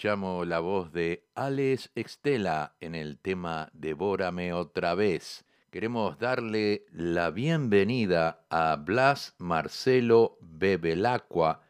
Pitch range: 95-140 Hz